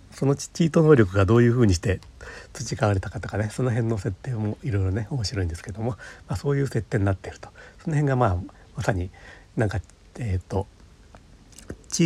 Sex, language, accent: male, Japanese, native